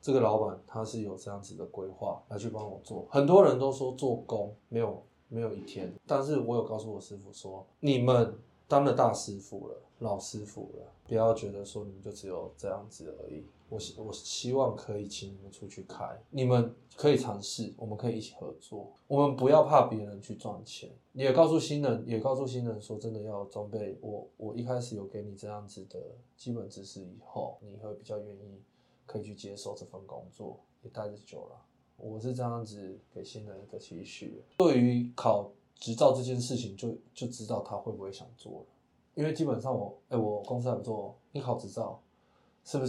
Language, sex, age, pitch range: Chinese, male, 20-39, 105-125 Hz